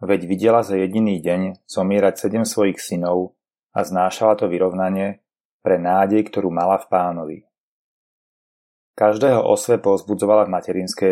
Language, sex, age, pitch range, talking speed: Slovak, male, 30-49, 95-105 Hz, 130 wpm